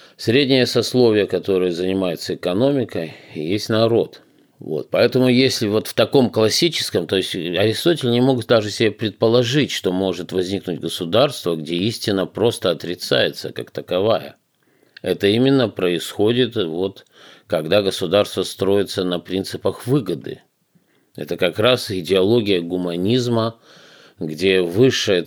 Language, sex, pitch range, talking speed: Russian, male, 90-120 Hz, 110 wpm